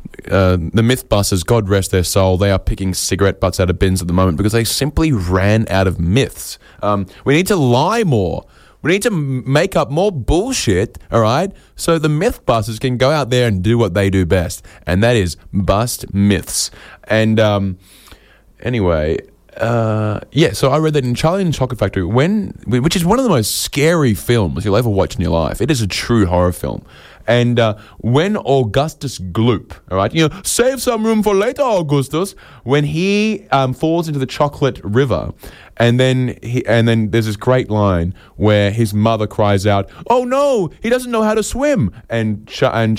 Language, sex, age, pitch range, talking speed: English, male, 20-39, 100-140 Hz, 195 wpm